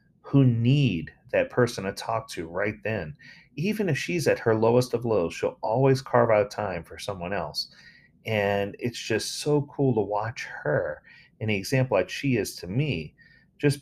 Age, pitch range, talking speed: 40-59, 100-135 Hz, 180 wpm